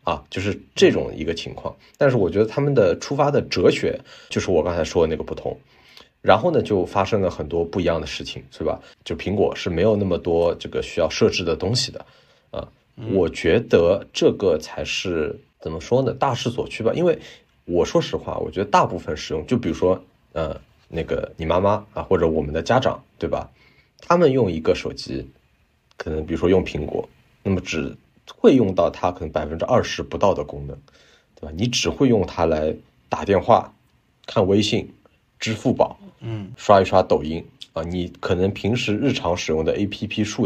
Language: Chinese